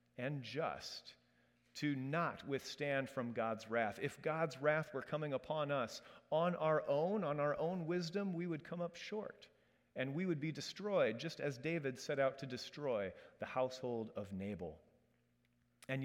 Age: 40-59